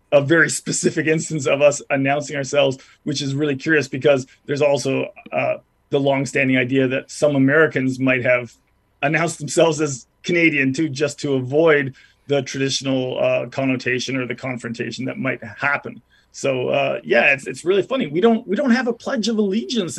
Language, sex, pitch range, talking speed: English, male, 130-160 Hz, 175 wpm